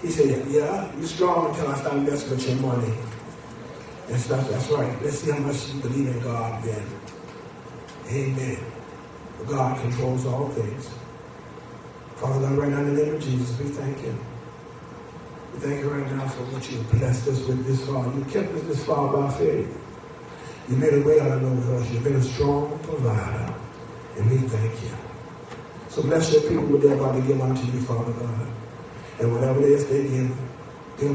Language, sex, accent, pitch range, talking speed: English, male, American, 125-145 Hz, 190 wpm